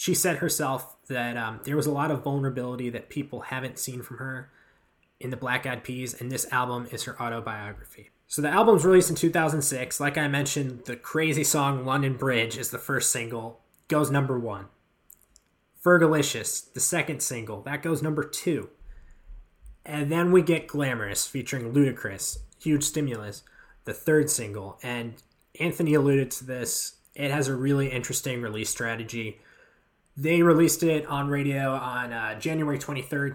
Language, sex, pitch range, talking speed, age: English, male, 125-150 Hz, 160 wpm, 20-39